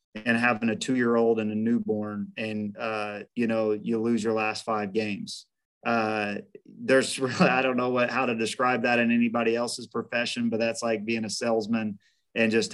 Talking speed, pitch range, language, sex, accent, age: 190 wpm, 110-125 Hz, English, male, American, 30-49